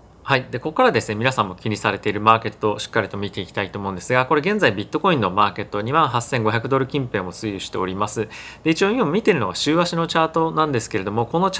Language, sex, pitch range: Japanese, male, 110-150 Hz